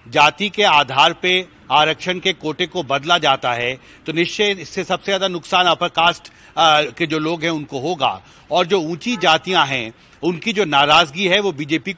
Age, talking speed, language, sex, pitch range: 40-59, 180 wpm, Hindi, male, 145-185 Hz